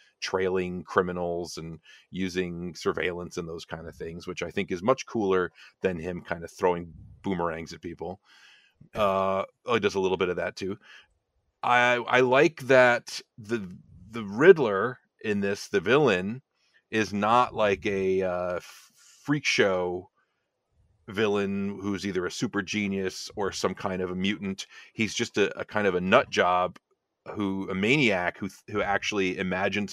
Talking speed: 160 wpm